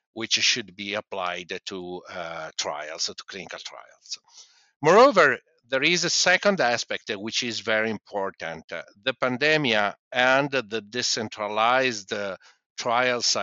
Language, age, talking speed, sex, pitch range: English, 50-69, 125 wpm, male, 105-145 Hz